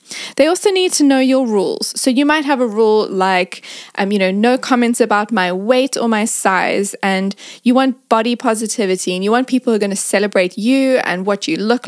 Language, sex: English, female